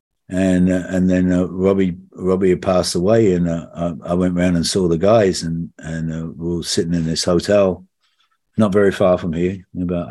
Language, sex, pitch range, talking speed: English, male, 85-105 Hz, 210 wpm